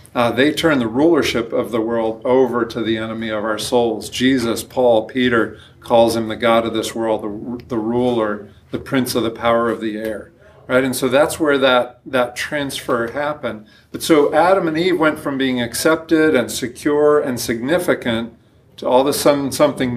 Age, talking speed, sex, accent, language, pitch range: 50-69, 190 wpm, male, American, English, 115-135 Hz